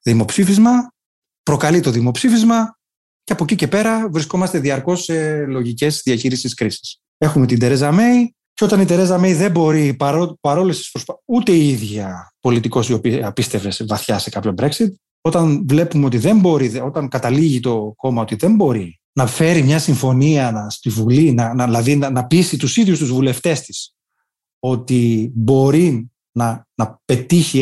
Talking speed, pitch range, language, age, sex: 160 wpm, 125-185 Hz, Greek, 30-49, male